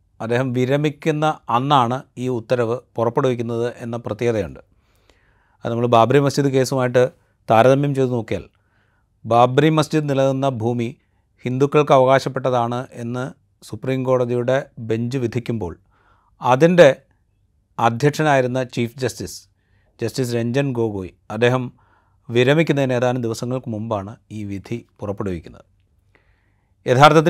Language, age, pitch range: Malayalam, 30-49, 110-135 Hz